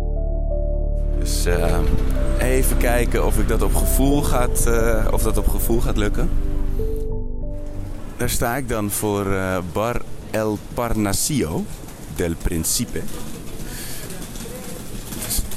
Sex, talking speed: male, 110 wpm